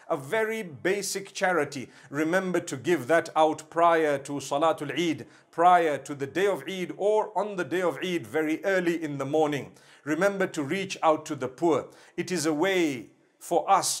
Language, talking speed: English, 185 wpm